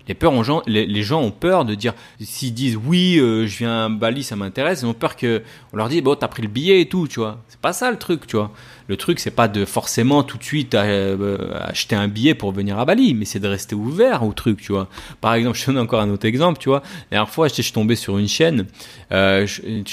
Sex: male